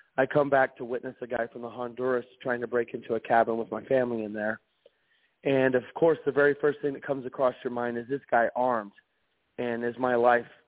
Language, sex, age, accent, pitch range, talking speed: English, male, 40-59, American, 120-145 Hz, 230 wpm